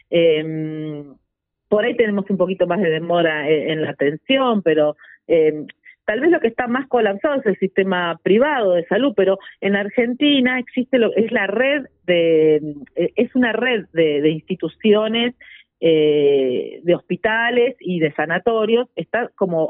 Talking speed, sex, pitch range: 145 wpm, female, 160-240 Hz